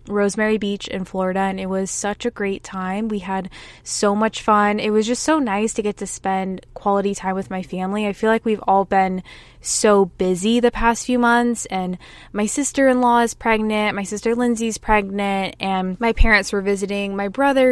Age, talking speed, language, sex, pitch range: 20-39, 205 wpm, English, female, 190-225 Hz